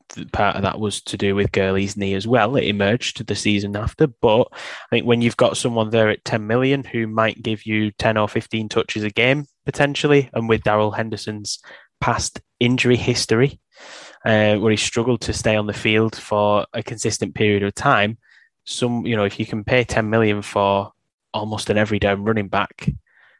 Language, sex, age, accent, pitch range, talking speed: English, male, 10-29, British, 105-120 Hz, 200 wpm